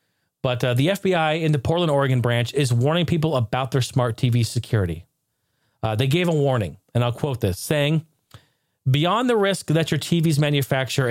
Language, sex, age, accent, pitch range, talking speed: English, male, 40-59, American, 120-155 Hz, 185 wpm